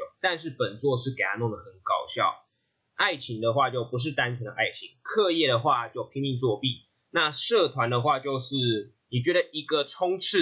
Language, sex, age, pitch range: Chinese, male, 20-39, 120-170 Hz